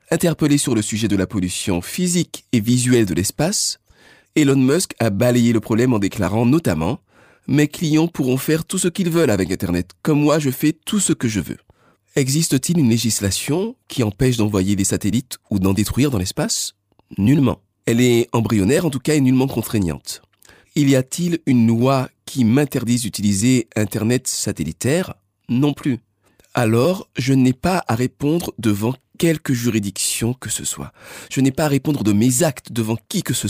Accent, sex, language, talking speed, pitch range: French, male, French, 180 wpm, 105-145 Hz